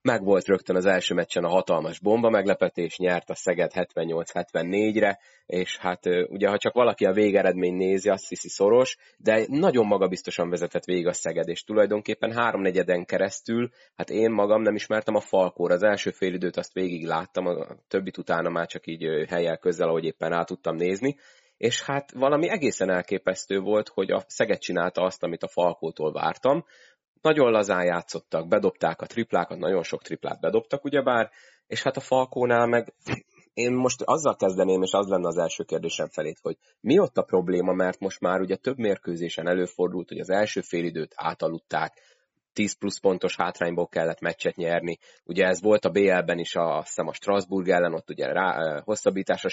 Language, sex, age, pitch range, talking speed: Hungarian, male, 30-49, 85-105 Hz, 175 wpm